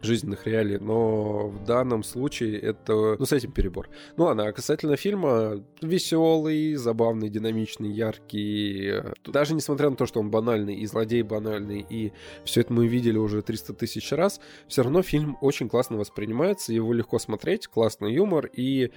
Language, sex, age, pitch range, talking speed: Russian, male, 20-39, 105-130 Hz, 160 wpm